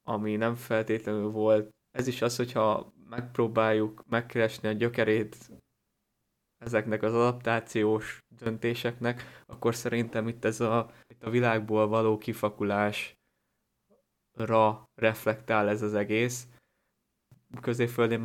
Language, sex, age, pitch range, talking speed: Hungarian, male, 20-39, 110-115 Hz, 100 wpm